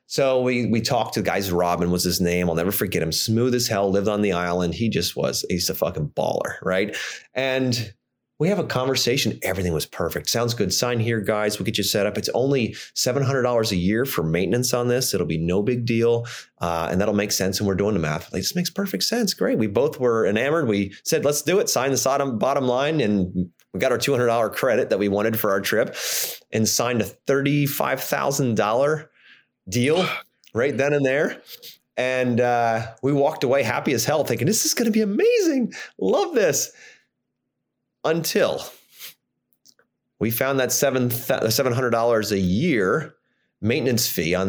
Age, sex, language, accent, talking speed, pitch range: 30-49, male, English, American, 190 wpm, 95-130 Hz